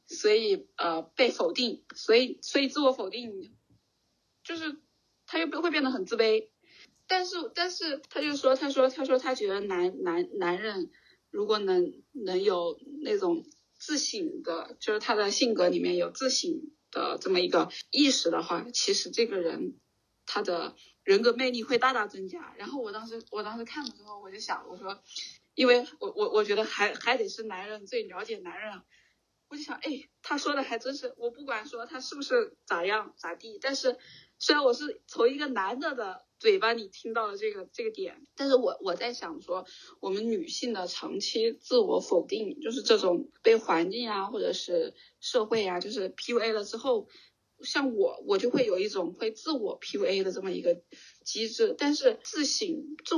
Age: 20-39